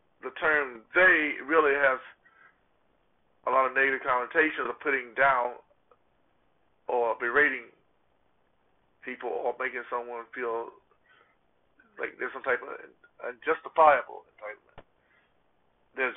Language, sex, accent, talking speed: English, male, American, 105 wpm